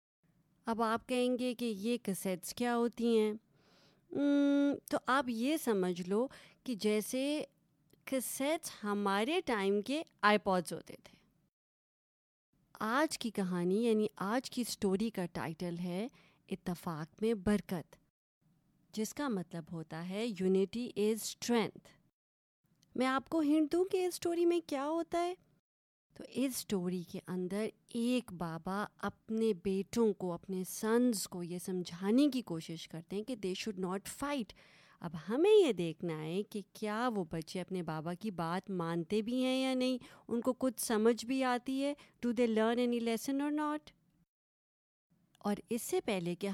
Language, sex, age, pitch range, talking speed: Urdu, female, 30-49, 185-250 Hz, 150 wpm